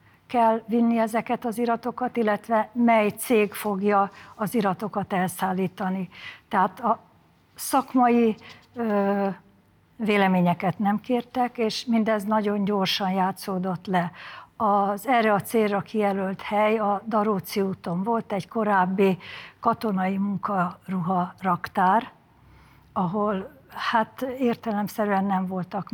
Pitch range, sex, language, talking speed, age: 190-220 Hz, female, Hungarian, 100 wpm, 60-79